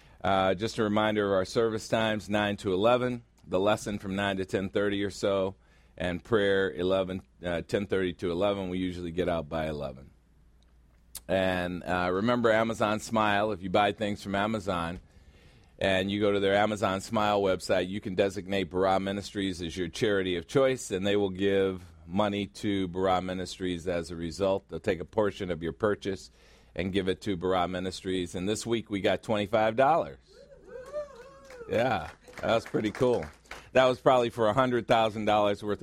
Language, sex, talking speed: English, male, 170 wpm